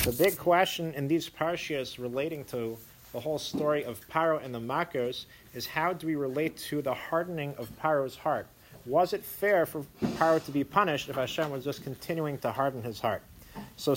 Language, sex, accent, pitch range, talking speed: English, male, American, 125-160 Hz, 195 wpm